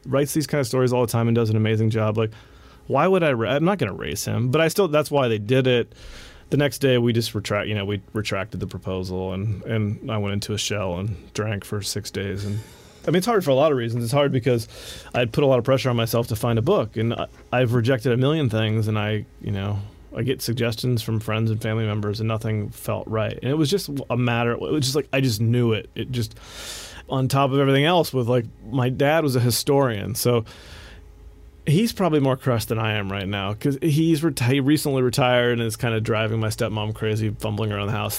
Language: English